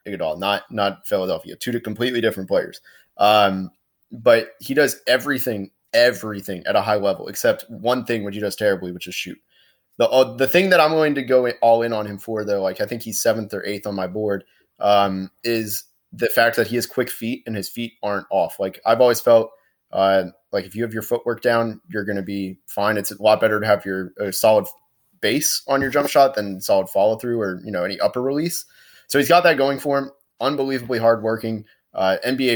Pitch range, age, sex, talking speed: 100-125 Hz, 20-39, male, 220 wpm